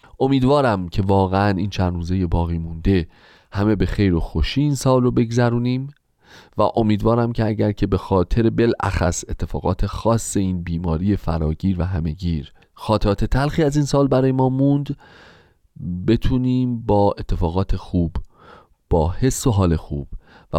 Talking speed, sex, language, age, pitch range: 145 wpm, male, Persian, 30-49, 85-125 Hz